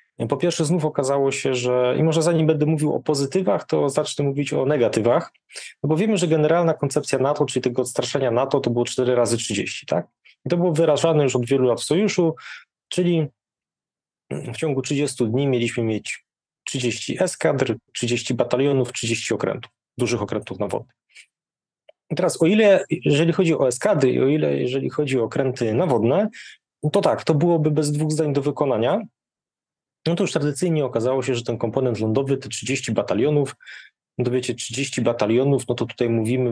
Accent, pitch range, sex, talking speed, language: native, 120-155 Hz, male, 175 wpm, Polish